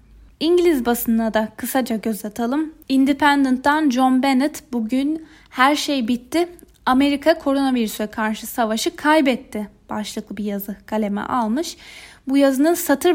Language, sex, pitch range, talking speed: Turkish, female, 225-290 Hz, 120 wpm